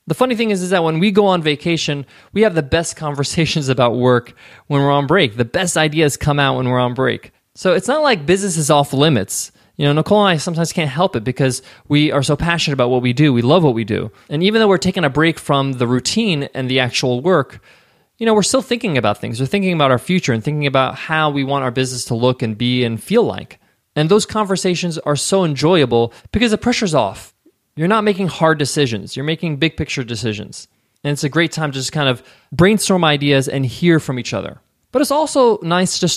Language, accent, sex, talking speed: English, American, male, 240 wpm